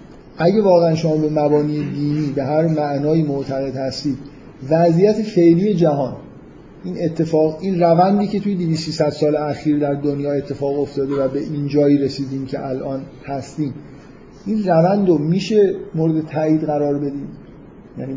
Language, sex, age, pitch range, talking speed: Persian, male, 30-49, 140-160 Hz, 145 wpm